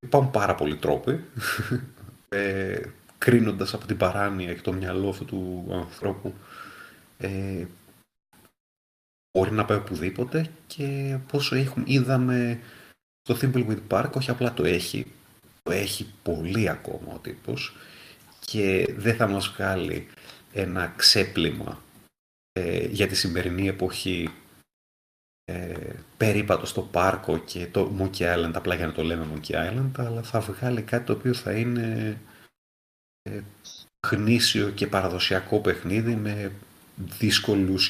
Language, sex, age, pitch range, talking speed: Greek, male, 30-49, 95-120 Hz, 125 wpm